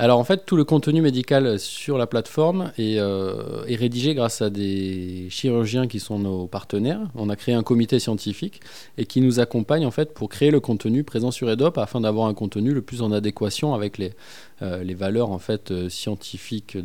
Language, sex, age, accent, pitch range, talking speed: French, male, 20-39, French, 110-140 Hz, 205 wpm